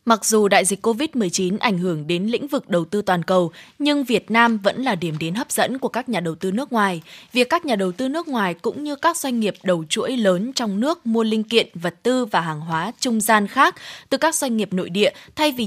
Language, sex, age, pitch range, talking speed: Vietnamese, female, 20-39, 195-260 Hz, 255 wpm